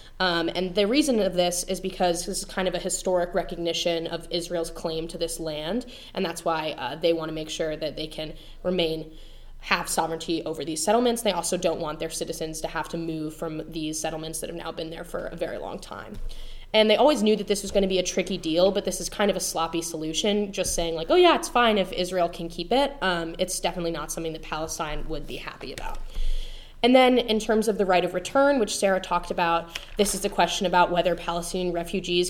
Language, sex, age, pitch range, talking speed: English, female, 10-29, 170-210 Hz, 235 wpm